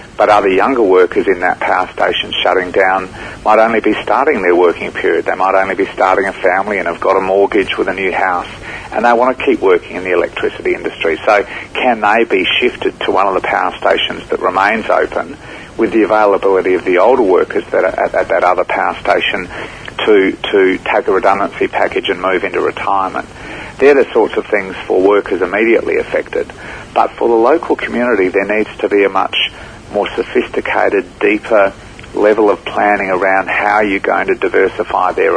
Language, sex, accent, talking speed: English, male, Australian, 195 wpm